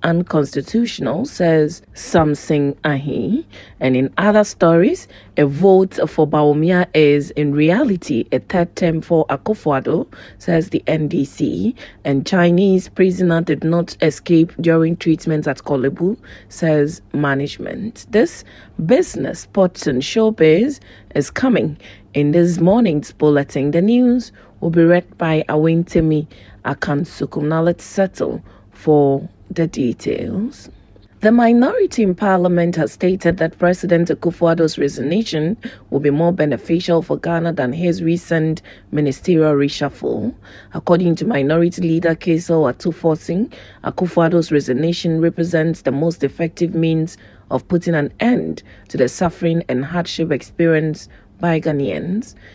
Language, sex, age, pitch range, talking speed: English, female, 30-49, 150-175 Hz, 125 wpm